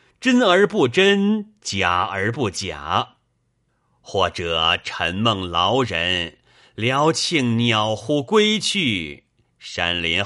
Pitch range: 95-135 Hz